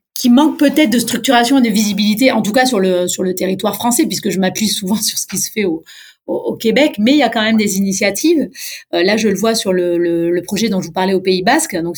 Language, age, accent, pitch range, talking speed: French, 30-49, French, 180-235 Hz, 280 wpm